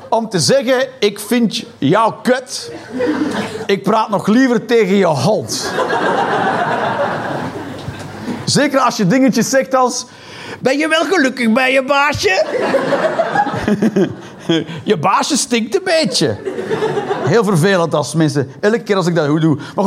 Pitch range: 145-240 Hz